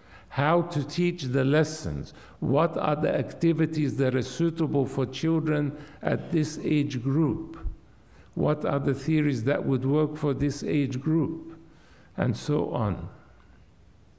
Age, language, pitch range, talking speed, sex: 50-69, English, 125-160 Hz, 135 wpm, male